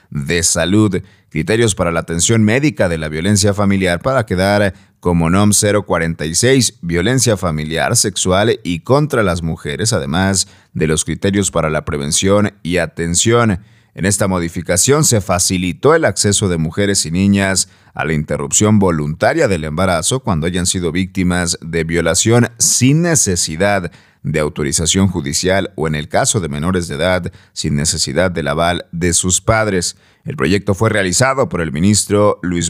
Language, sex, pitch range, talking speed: Spanish, male, 85-105 Hz, 150 wpm